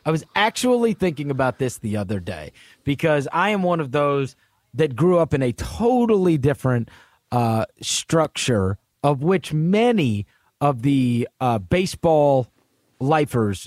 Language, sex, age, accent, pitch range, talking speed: English, male, 30-49, American, 115-155 Hz, 140 wpm